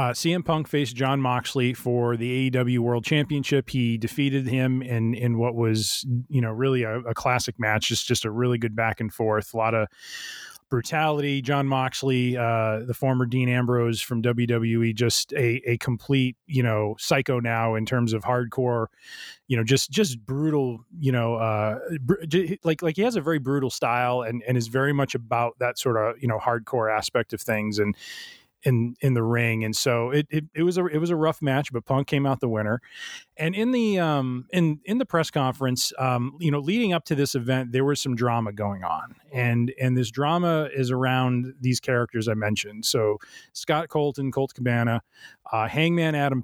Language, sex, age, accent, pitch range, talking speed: English, male, 30-49, American, 120-145 Hz, 200 wpm